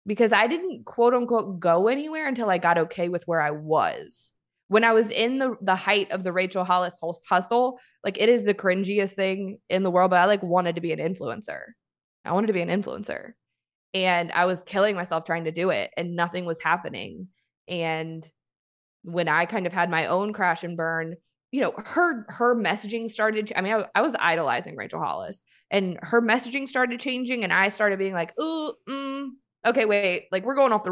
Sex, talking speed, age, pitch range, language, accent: female, 210 wpm, 20-39, 180-220 Hz, English, American